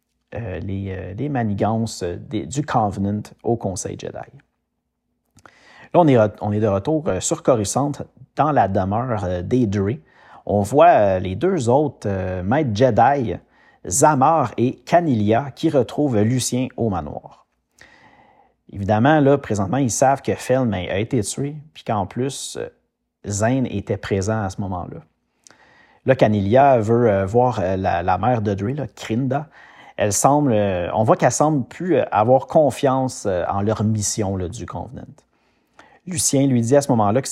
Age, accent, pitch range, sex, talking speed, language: 40-59, Canadian, 105-135 Hz, male, 160 wpm, French